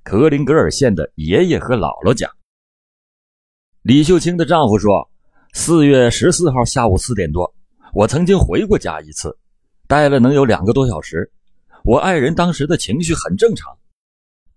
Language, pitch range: Chinese, 100-170 Hz